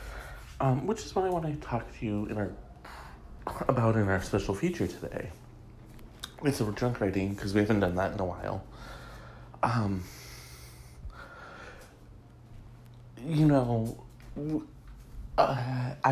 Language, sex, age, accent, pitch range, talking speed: English, male, 30-49, American, 95-135 Hz, 125 wpm